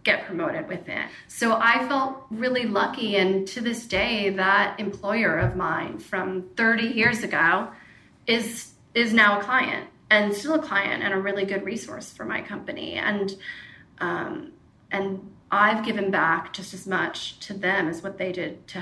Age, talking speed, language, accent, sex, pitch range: 30-49, 170 wpm, English, American, female, 195-225 Hz